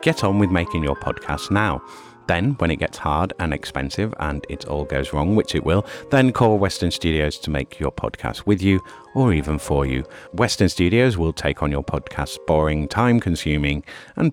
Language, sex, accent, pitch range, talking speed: English, male, British, 75-105 Hz, 195 wpm